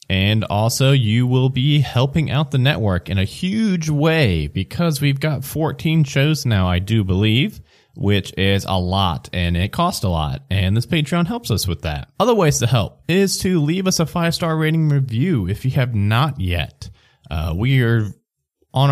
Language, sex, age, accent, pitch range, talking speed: English, male, 20-39, American, 95-145 Hz, 185 wpm